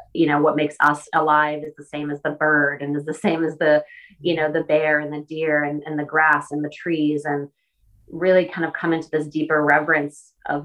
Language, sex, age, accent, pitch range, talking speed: English, female, 30-49, American, 145-160 Hz, 235 wpm